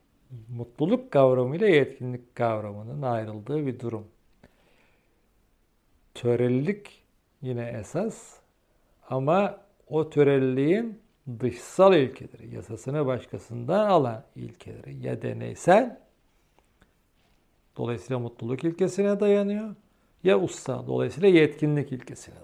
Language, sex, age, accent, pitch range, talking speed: Turkish, male, 50-69, native, 120-205 Hz, 85 wpm